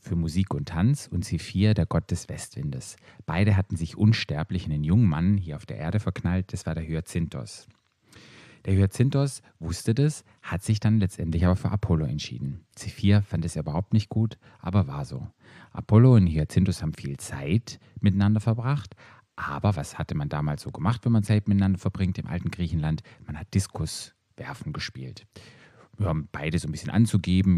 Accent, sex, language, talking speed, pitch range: German, male, German, 180 wpm, 85-110 Hz